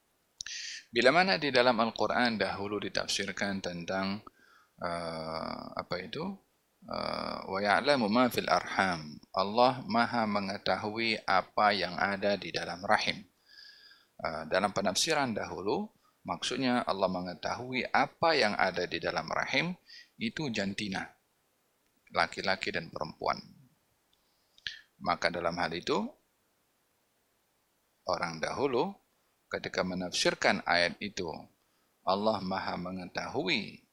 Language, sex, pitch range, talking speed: Malay, male, 100-130 Hz, 95 wpm